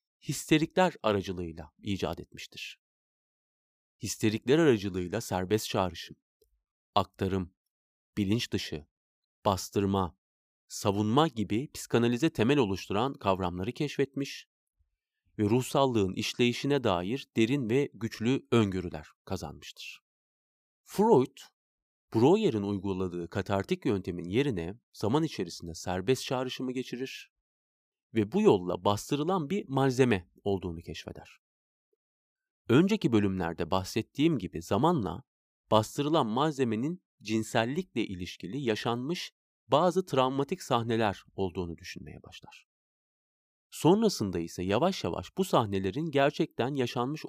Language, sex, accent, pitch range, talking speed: Turkish, male, native, 90-140 Hz, 90 wpm